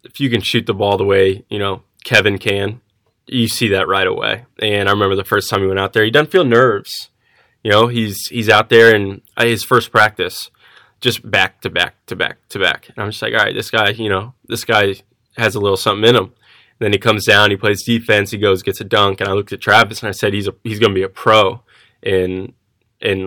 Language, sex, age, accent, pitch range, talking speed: English, male, 10-29, American, 95-115 Hz, 250 wpm